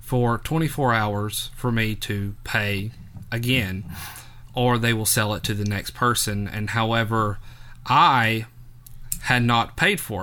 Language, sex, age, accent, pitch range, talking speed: English, male, 30-49, American, 120-190 Hz, 140 wpm